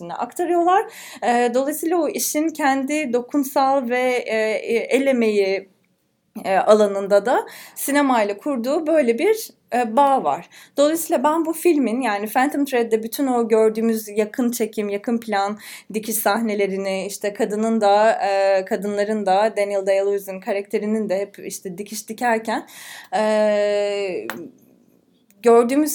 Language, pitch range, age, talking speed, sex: English, 195-245 Hz, 20-39, 110 wpm, female